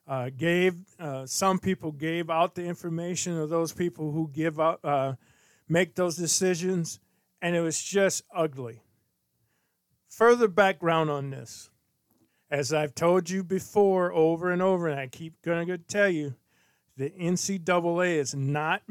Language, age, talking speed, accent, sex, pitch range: English, 50-69, 150 wpm, American, male, 155-190 Hz